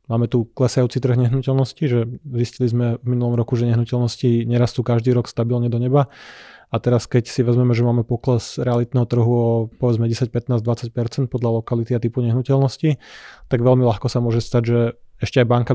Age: 20-39